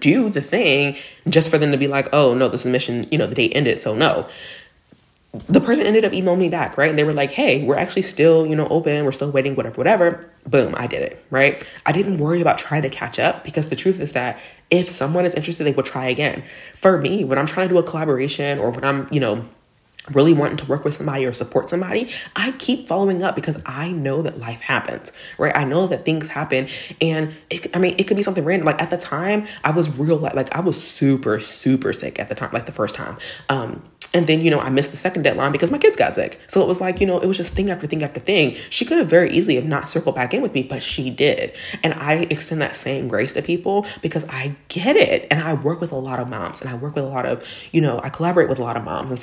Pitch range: 135-175 Hz